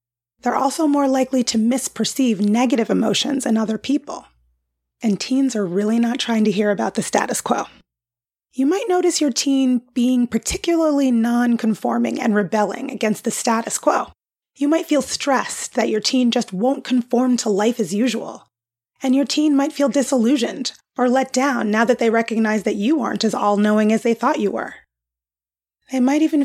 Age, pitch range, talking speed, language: 30-49, 215-265 Hz, 175 wpm, English